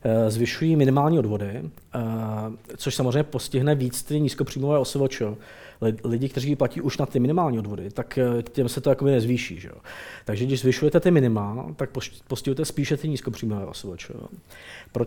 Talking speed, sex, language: 145 wpm, male, Czech